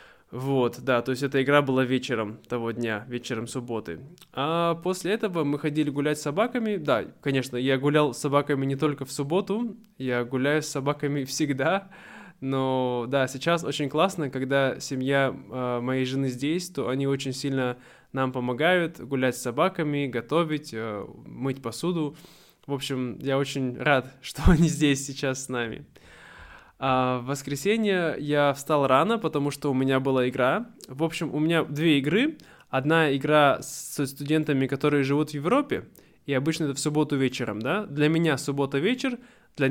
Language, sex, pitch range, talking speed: Russian, male, 130-165 Hz, 160 wpm